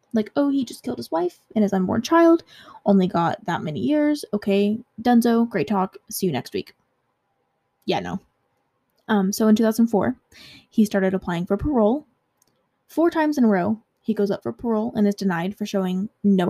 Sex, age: female, 10-29